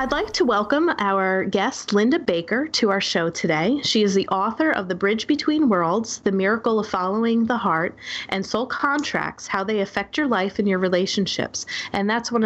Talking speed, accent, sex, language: 195 wpm, American, female, English